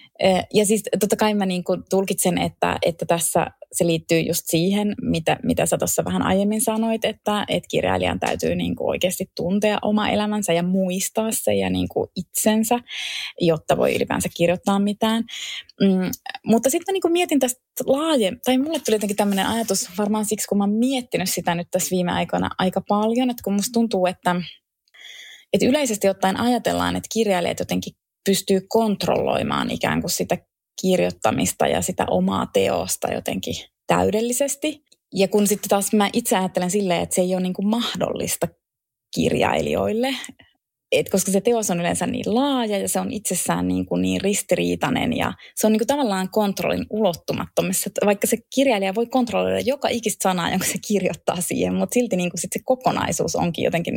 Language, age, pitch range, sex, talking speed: Finnish, 20-39, 180-225 Hz, female, 170 wpm